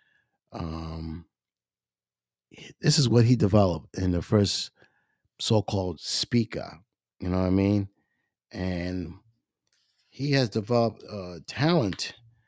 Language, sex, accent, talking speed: English, male, American, 105 wpm